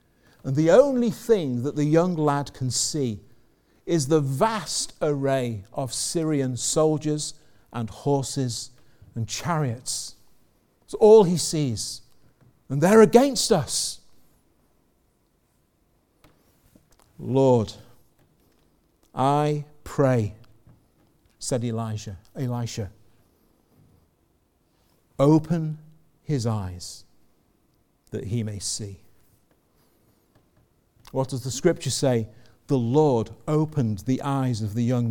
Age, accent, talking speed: 50-69, British, 90 wpm